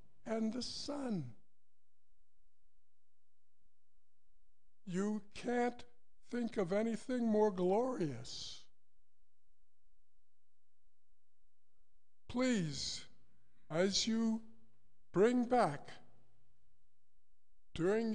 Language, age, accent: English, 60-79, American